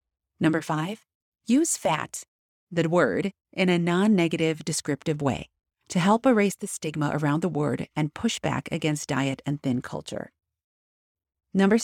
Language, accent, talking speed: English, American, 140 wpm